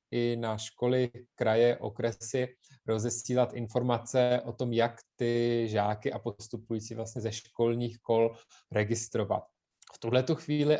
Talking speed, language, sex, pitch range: 120 wpm, Czech, male, 120-145 Hz